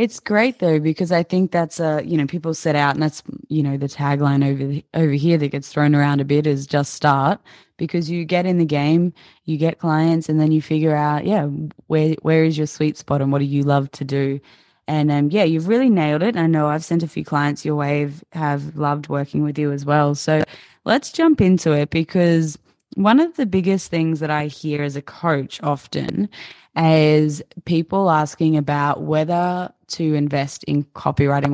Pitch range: 145-165 Hz